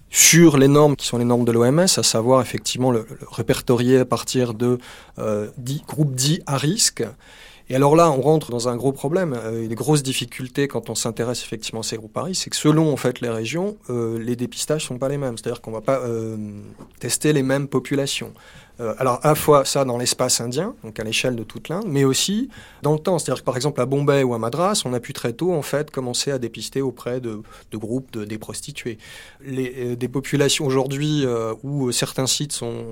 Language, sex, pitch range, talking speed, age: French, male, 120-145 Hz, 220 wpm, 30-49